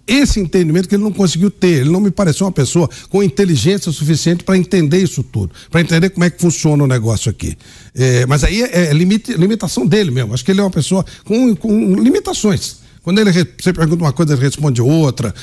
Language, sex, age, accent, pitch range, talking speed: Portuguese, male, 60-79, Brazilian, 140-200 Hz, 220 wpm